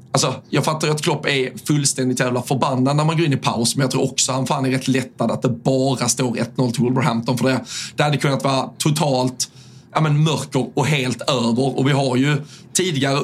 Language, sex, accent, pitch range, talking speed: Swedish, male, native, 130-145 Hz, 225 wpm